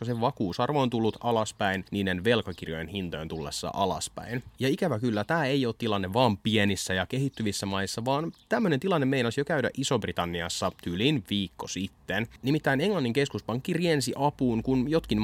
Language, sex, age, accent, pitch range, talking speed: Finnish, male, 30-49, native, 100-135 Hz, 155 wpm